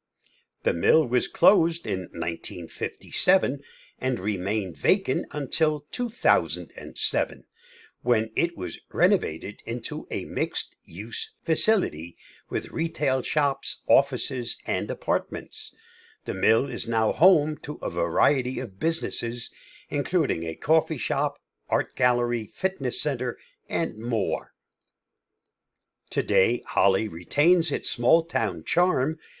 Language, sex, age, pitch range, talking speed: English, male, 60-79, 120-175 Hz, 105 wpm